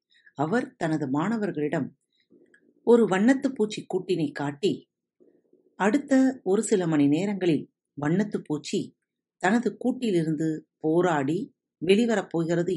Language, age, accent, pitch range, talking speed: Tamil, 50-69, native, 145-210 Hz, 80 wpm